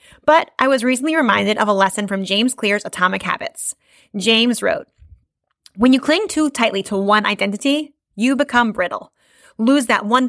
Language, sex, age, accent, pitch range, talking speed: English, female, 30-49, American, 210-275 Hz, 170 wpm